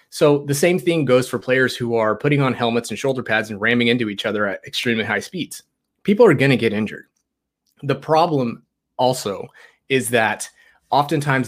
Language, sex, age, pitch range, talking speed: English, male, 30-49, 115-140 Hz, 185 wpm